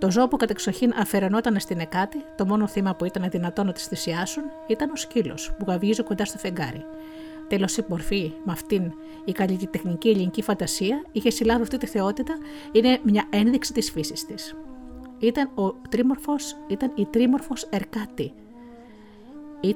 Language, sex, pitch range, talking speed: Greek, female, 185-255 Hz, 160 wpm